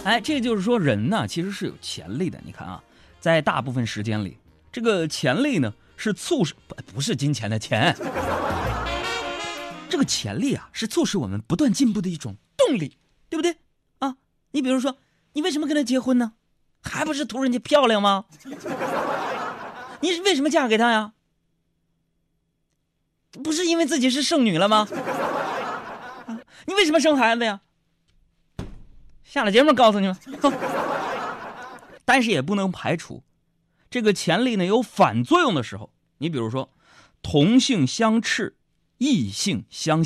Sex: male